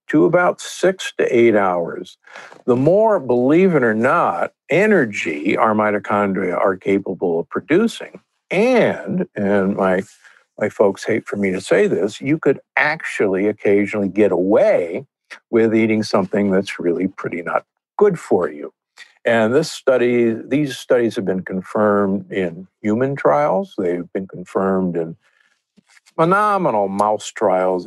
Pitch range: 100-145 Hz